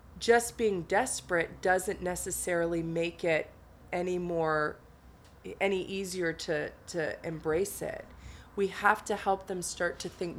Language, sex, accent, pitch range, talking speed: English, female, American, 165-200 Hz, 135 wpm